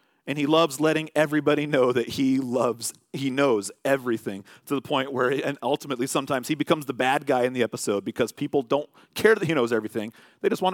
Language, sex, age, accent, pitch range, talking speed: English, male, 40-59, American, 115-145 Hz, 220 wpm